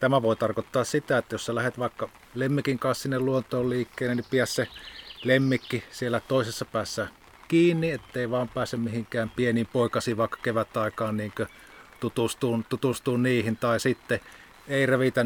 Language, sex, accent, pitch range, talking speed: English, male, Finnish, 110-130 Hz, 150 wpm